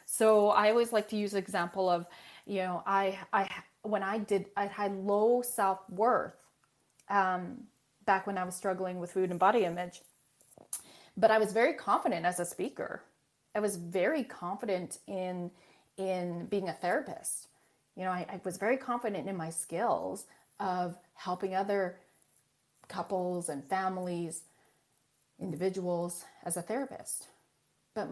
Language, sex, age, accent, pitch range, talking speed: English, female, 30-49, American, 185-250 Hz, 145 wpm